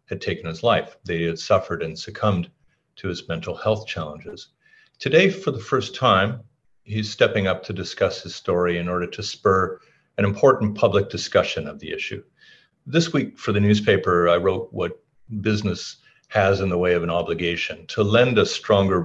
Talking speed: 180 wpm